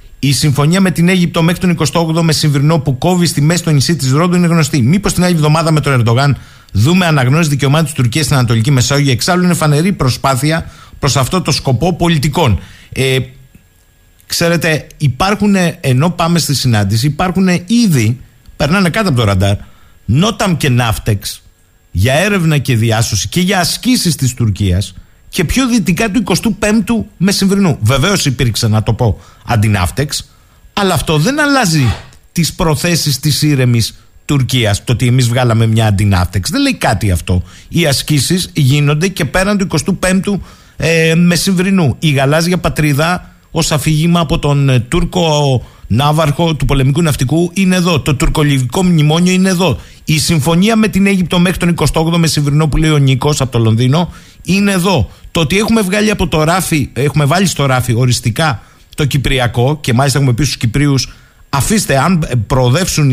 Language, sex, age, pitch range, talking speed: Greek, male, 50-69, 125-175 Hz, 165 wpm